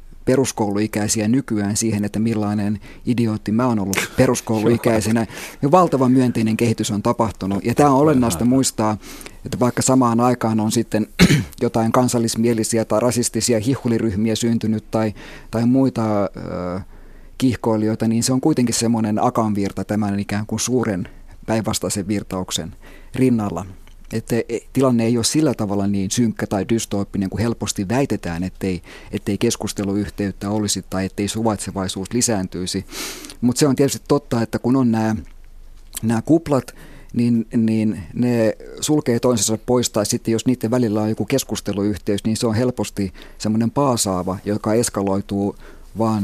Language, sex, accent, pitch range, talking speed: Finnish, male, native, 100-120 Hz, 140 wpm